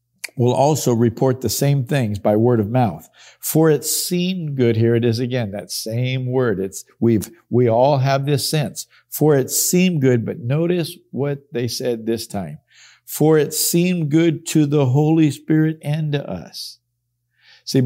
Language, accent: English, American